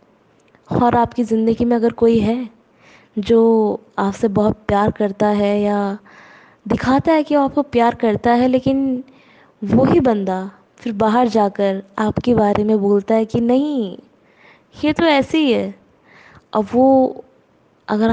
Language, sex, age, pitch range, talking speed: Hindi, female, 20-39, 215-260 Hz, 140 wpm